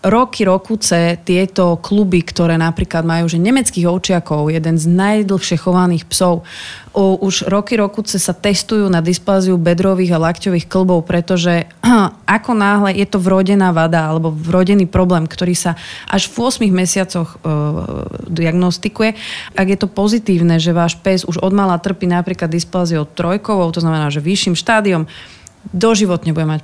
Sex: female